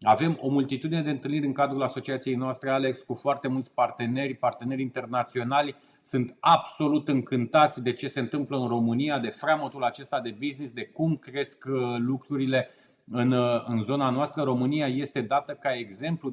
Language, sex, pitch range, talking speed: Romanian, male, 125-145 Hz, 160 wpm